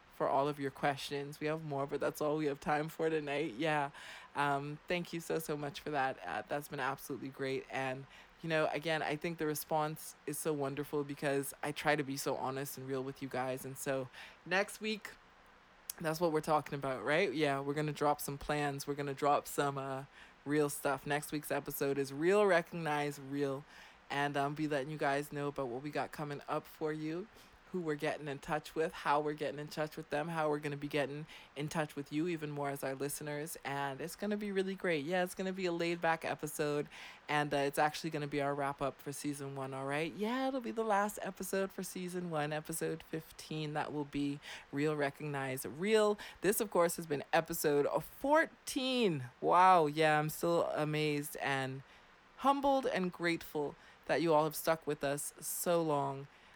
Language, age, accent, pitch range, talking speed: English, 20-39, American, 140-165 Hz, 210 wpm